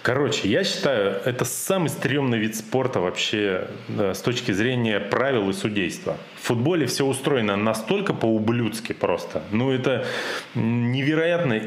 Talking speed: 130 wpm